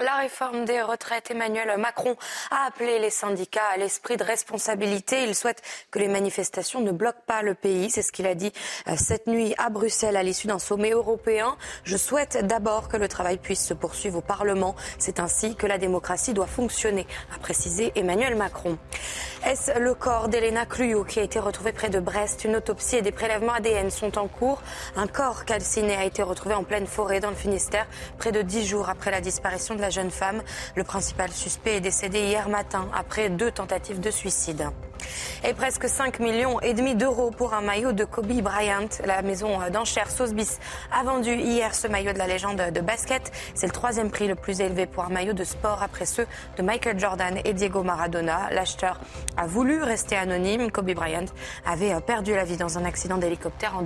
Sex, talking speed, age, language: female, 195 wpm, 20-39, French